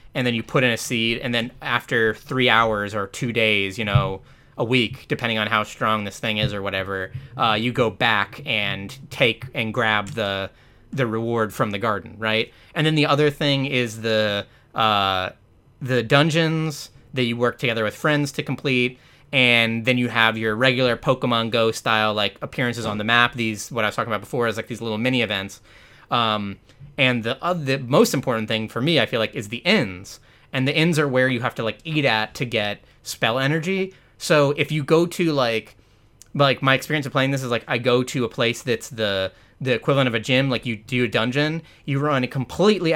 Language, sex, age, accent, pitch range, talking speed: English, male, 30-49, American, 110-135 Hz, 215 wpm